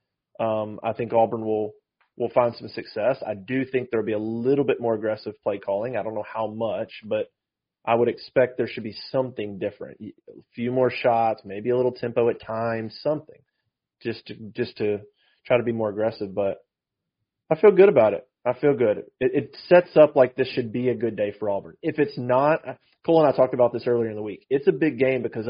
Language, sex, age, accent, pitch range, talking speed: English, male, 30-49, American, 110-140 Hz, 230 wpm